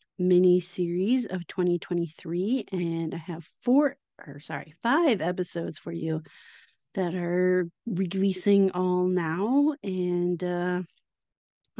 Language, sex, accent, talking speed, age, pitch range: English, female, American, 105 wpm, 30-49, 170-200 Hz